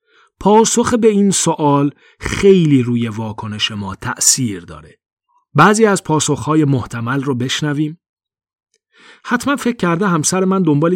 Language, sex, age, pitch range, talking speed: Persian, male, 40-59, 125-200 Hz, 120 wpm